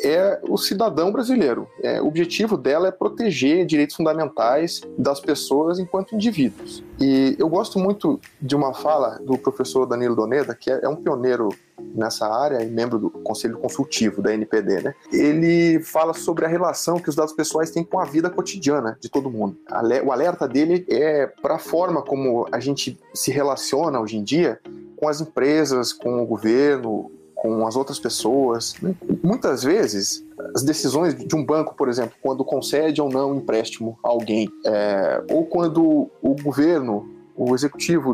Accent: Brazilian